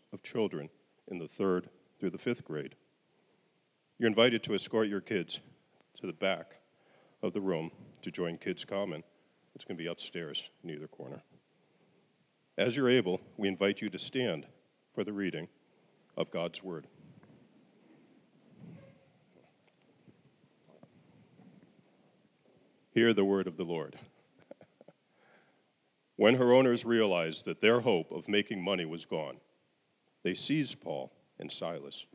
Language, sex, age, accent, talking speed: English, male, 50-69, American, 130 wpm